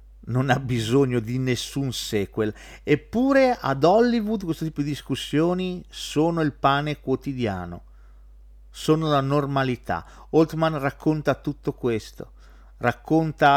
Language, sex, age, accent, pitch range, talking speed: Italian, male, 50-69, native, 115-155 Hz, 110 wpm